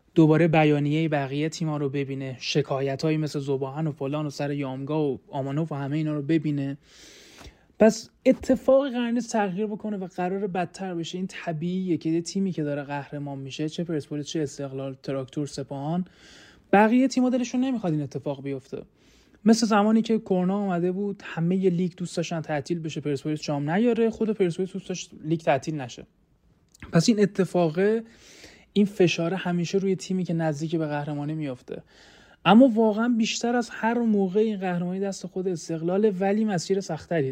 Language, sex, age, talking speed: Persian, male, 30-49, 160 wpm